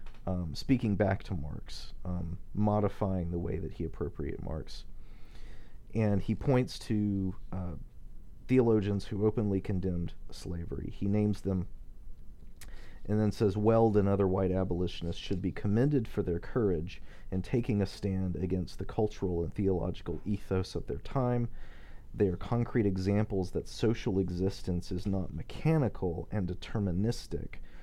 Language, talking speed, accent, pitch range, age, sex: English, 140 wpm, American, 90-105 Hz, 40-59, male